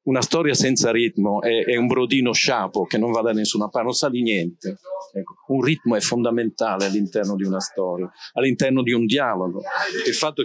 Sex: male